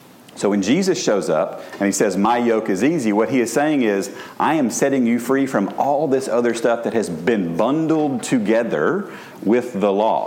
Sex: male